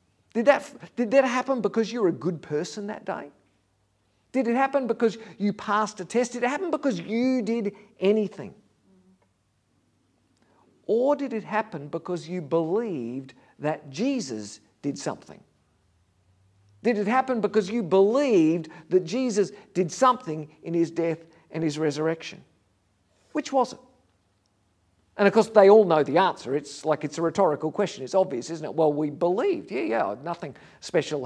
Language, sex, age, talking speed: English, male, 50-69, 155 wpm